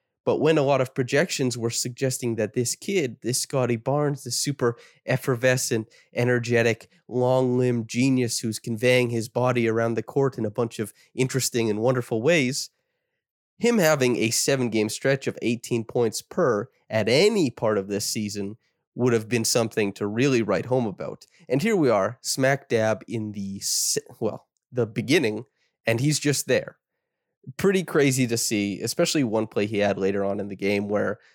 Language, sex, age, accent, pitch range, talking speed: English, male, 20-39, American, 110-130 Hz, 170 wpm